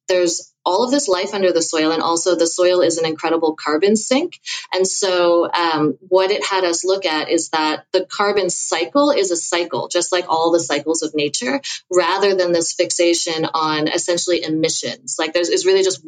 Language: English